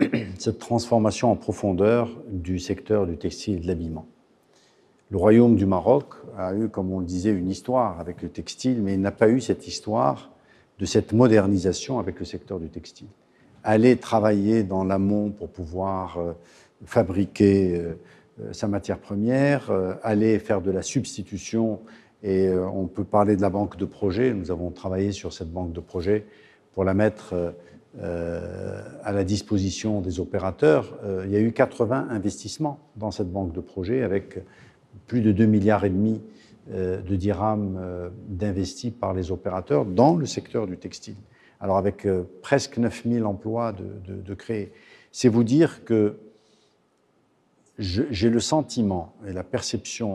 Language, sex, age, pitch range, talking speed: Arabic, male, 50-69, 95-110 Hz, 160 wpm